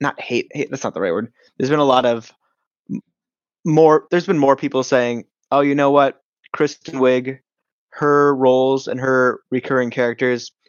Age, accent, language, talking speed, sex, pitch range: 20-39, American, English, 175 wpm, male, 115-135 Hz